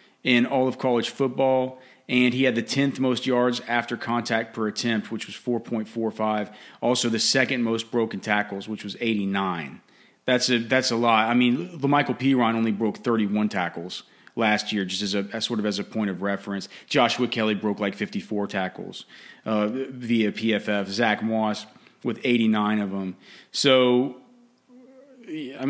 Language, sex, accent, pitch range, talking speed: English, male, American, 105-130 Hz, 175 wpm